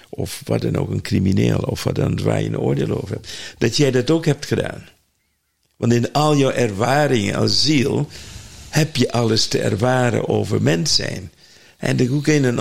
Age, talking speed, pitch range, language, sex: 50-69, 195 wpm, 110-140 Hz, Dutch, male